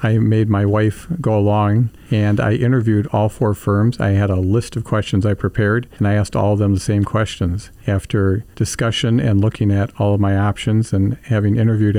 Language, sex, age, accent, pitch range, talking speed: English, male, 50-69, American, 100-115 Hz, 205 wpm